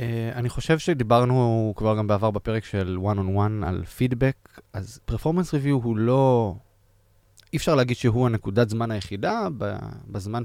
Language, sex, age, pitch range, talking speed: Hebrew, male, 20-39, 100-125 Hz, 150 wpm